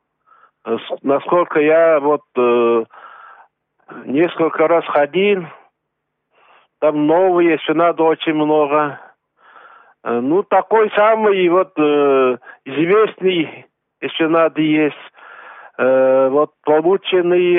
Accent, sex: native, male